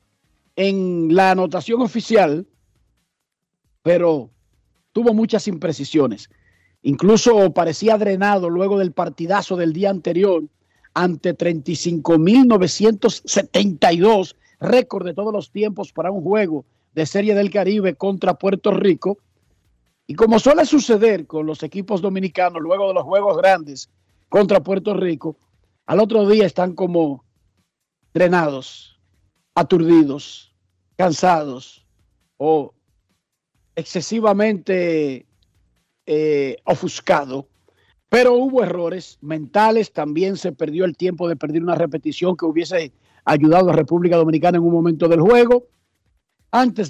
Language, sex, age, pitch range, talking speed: Spanish, male, 50-69, 155-200 Hz, 115 wpm